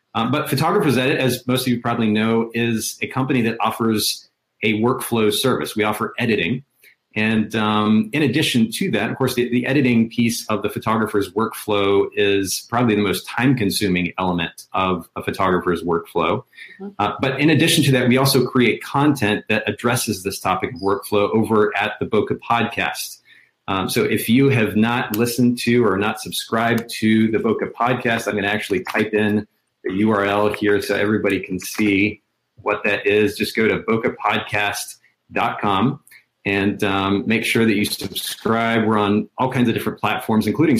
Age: 30-49